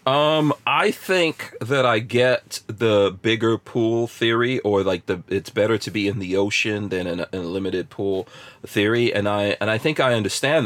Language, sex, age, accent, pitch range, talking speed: English, male, 40-59, American, 100-135 Hz, 190 wpm